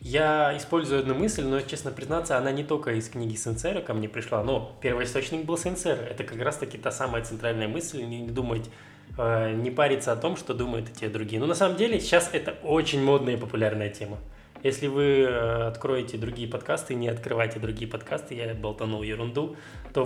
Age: 20-39